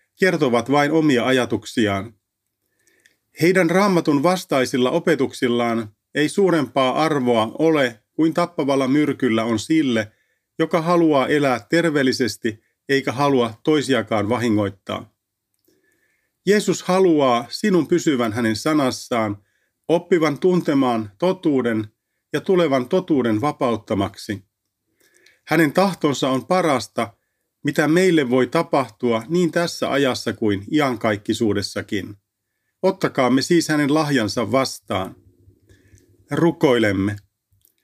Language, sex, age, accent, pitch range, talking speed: Finnish, male, 40-59, native, 110-165 Hz, 90 wpm